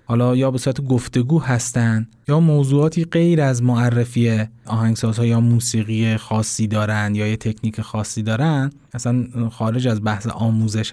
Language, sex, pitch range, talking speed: Persian, male, 115-135 Hz, 150 wpm